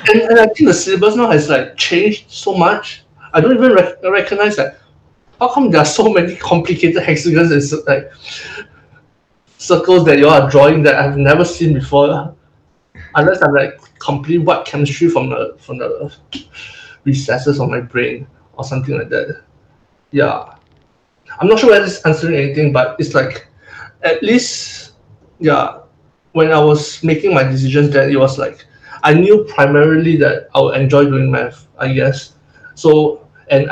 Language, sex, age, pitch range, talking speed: English, male, 20-39, 140-185 Hz, 160 wpm